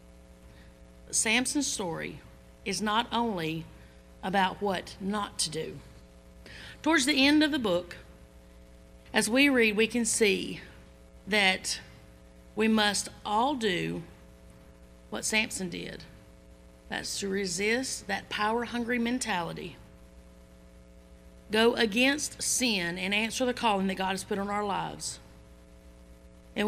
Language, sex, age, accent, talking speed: English, female, 40-59, American, 115 wpm